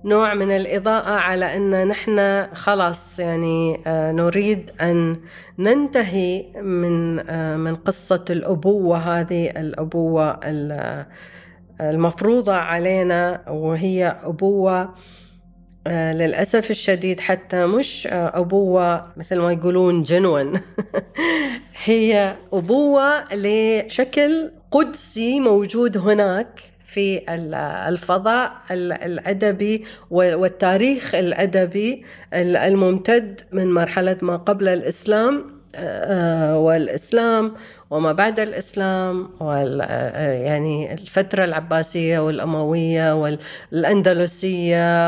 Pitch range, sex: 165-205 Hz, female